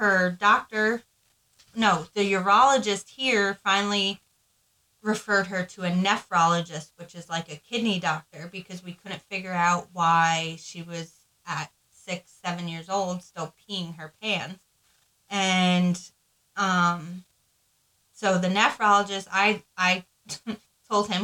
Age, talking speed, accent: 20-39, 125 wpm, American